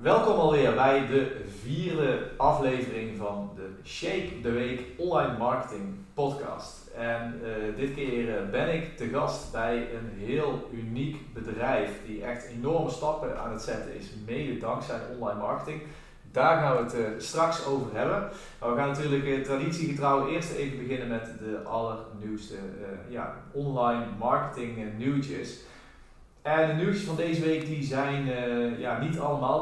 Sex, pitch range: male, 115-140 Hz